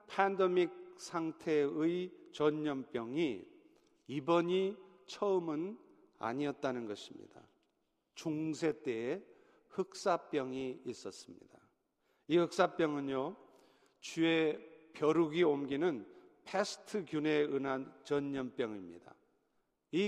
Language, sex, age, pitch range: Korean, male, 50-69, 145-195 Hz